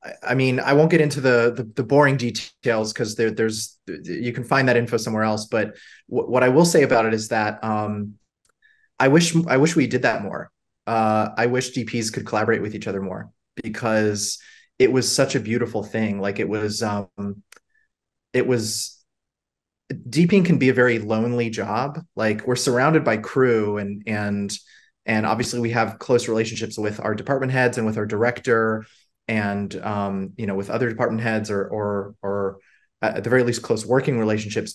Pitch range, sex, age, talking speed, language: 110-125 Hz, male, 30-49, 190 wpm, English